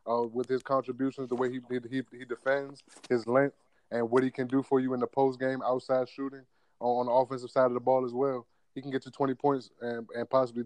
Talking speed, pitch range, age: 235 wpm, 120-135 Hz, 20-39